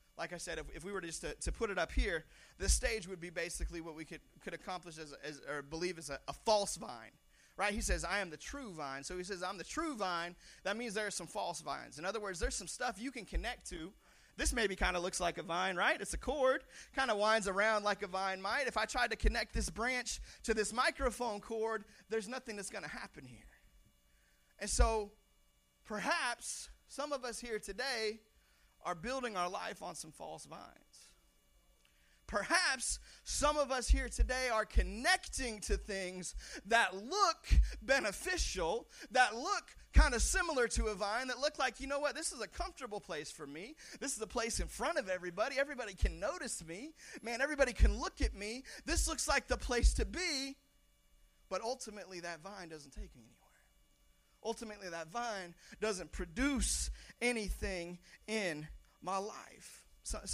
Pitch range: 180-250 Hz